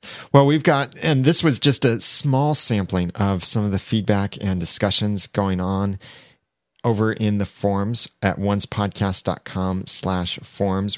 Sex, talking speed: male, 150 wpm